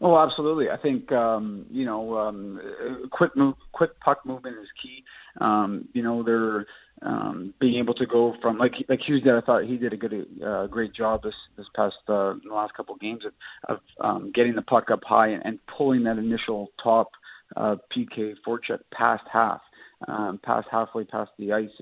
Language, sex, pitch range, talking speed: English, male, 105-115 Hz, 200 wpm